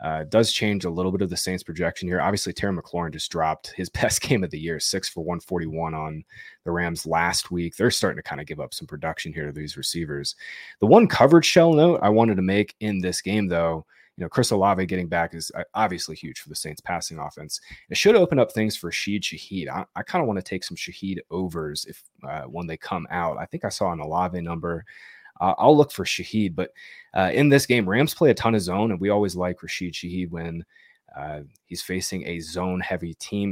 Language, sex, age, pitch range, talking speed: English, male, 20-39, 85-100 Hz, 235 wpm